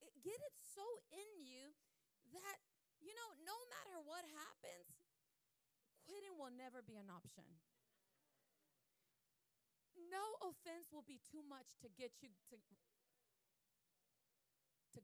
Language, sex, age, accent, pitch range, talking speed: English, female, 30-49, American, 255-380 Hz, 115 wpm